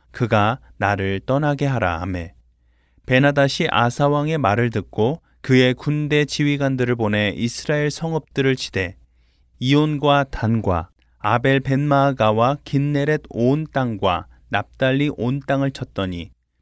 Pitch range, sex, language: 100-140 Hz, male, Korean